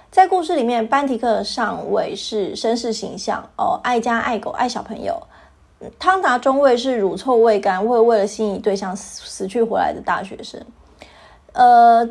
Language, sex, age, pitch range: Chinese, female, 20-39, 210-275 Hz